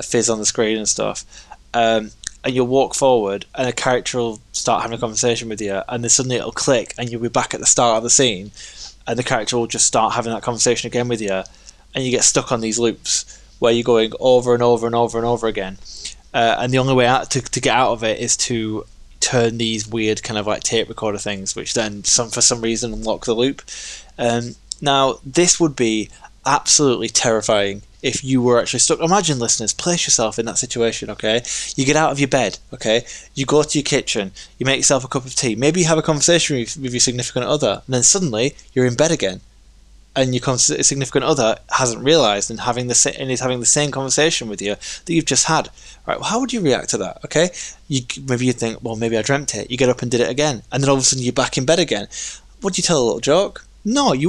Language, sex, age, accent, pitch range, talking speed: English, male, 20-39, British, 115-135 Hz, 240 wpm